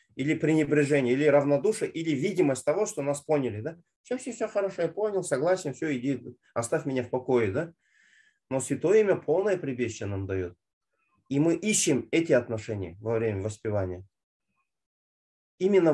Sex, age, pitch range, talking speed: male, 30-49, 120-160 Hz, 150 wpm